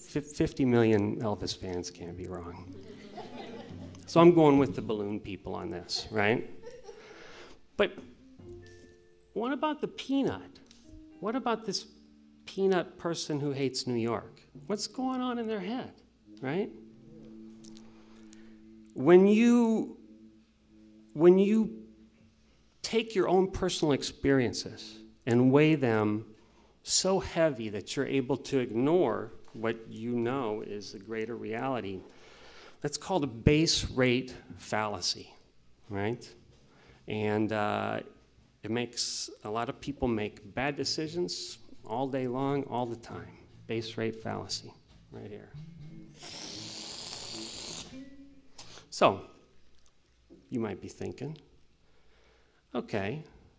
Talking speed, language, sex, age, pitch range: 110 wpm, English, male, 40-59, 105-155 Hz